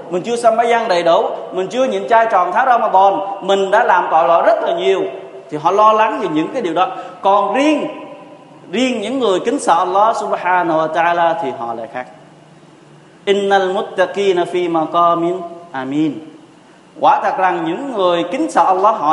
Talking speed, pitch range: 190 wpm, 170-240 Hz